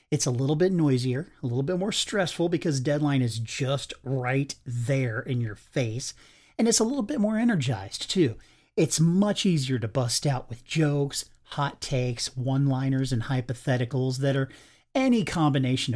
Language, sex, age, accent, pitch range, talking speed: English, male, 40-59, American, 130-170 Hz, 165 wpm